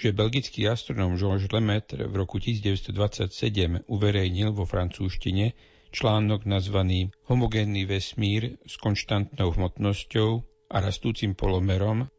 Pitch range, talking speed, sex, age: 95-115 Hz, 105 wpm, male, 50-69